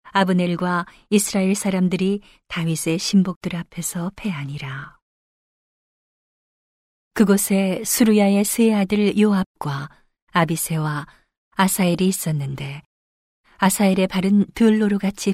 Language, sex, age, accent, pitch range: Korean, female, 40-59, native, 170-200 Hz